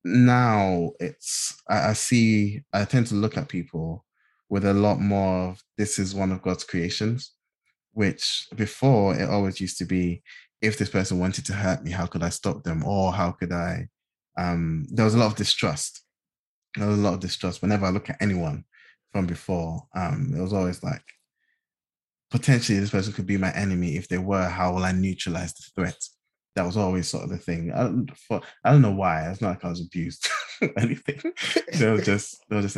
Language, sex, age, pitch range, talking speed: English, male, 20-39, 90-105 Hz, 210 wpm